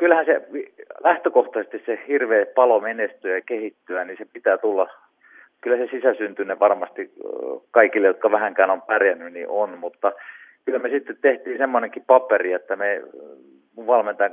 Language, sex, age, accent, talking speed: Finnish, male, 40-59, native, 140 wpm